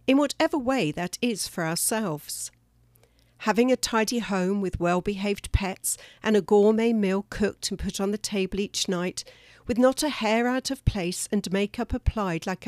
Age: 50-69